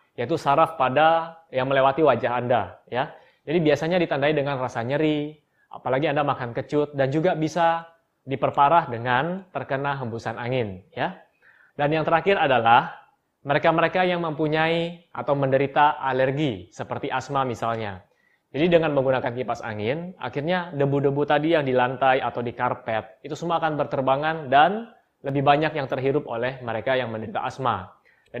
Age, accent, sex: 20-39, native, male